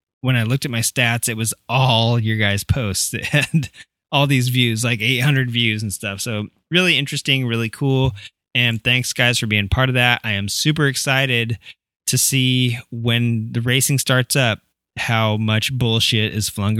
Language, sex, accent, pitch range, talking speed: English, male, American, 110-135 Hz, 180 wpm